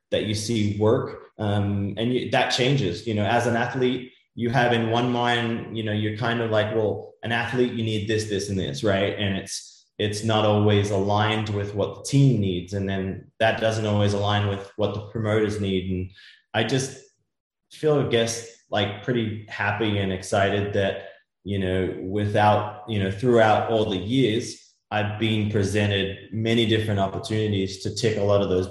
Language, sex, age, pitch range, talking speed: English, male, 20-39, 100-110 Hz, 190 wpm